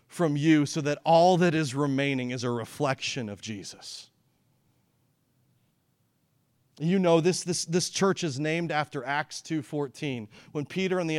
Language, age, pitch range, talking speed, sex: English, 40-59, 130-175 Hz, 150 wpm, male